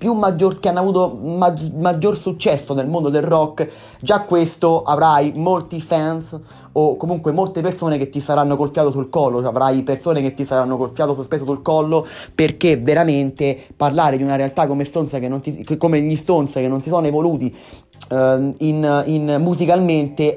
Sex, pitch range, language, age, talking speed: male, 140-170 Hz, Italian, 30-49, 180 wpm